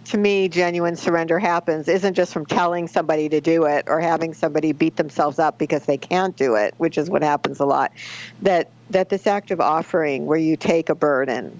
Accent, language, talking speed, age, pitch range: American, English, 210 wpm, 50-69, 145-175 Hz